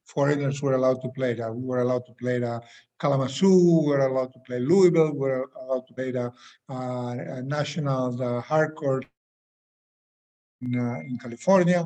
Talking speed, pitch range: 170 wpm, 130-165 Hz